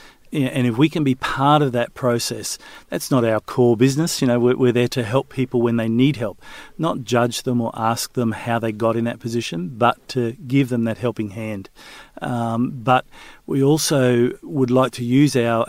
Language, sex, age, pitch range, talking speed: English, male, 50-69, 115-140 Hz, 205 wpm